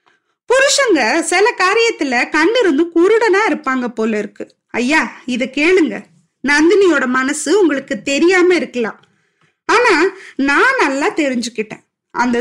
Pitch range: 260-370 Hz